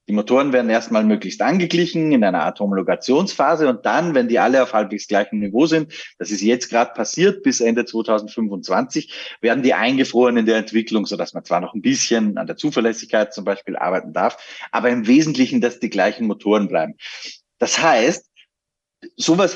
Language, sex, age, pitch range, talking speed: German, male, 30-49, 115-180 Hz, 180 wpm